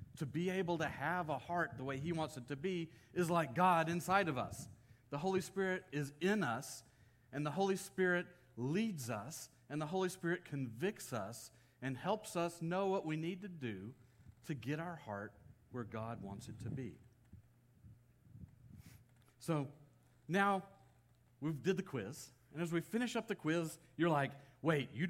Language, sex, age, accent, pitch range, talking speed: English, male, 40-59, American, 120-170 Hz, 180 wpm